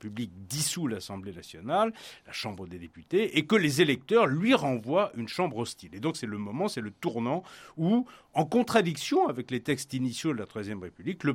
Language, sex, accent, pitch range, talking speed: French, male, French, 105-150 Hz, 195 wpm